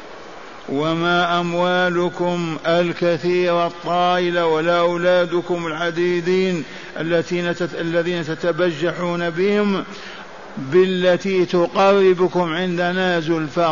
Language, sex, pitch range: Arabic, male, 165-180 Hz